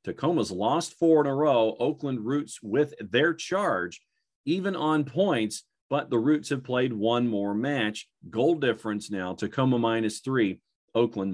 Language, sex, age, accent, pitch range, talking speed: English, male, 40-59, American, 110-135 Hz, 155 wpm